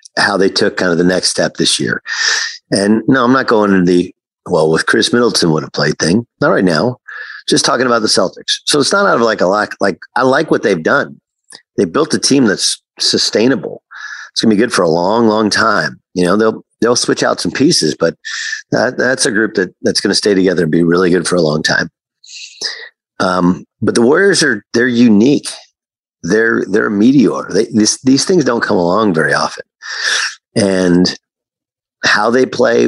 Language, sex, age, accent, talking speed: English, male, 50-69, American, 205 wpm